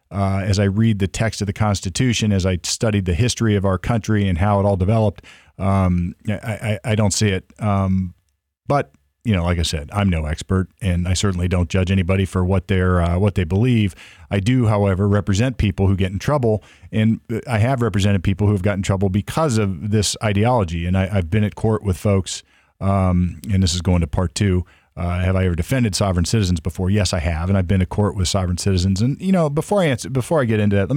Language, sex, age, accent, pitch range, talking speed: English, male, 40-59, American, 90-110 Hz, 235 wpm